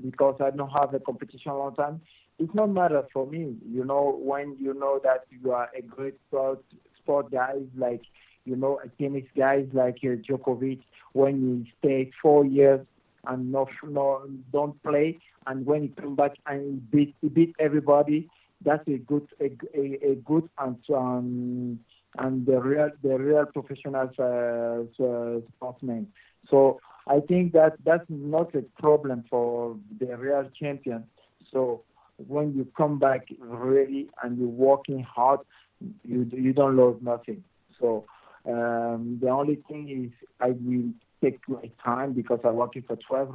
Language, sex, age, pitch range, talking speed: English, male, 50-69, 120-140 Hz, 160 wpm